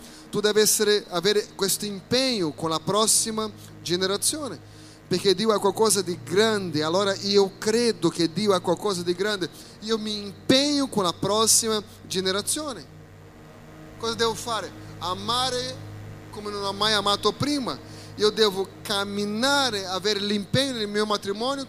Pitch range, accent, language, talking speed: 160-240 Hz, Brazilian, Italian, 135 wpm